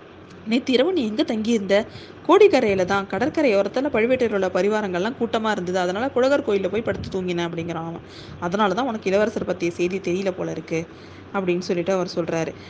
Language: Tamil